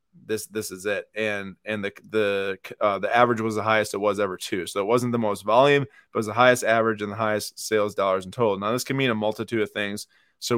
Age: 20-39